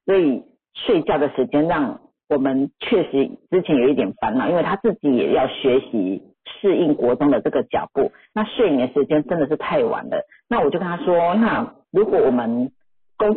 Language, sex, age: Chinese, female, 50-69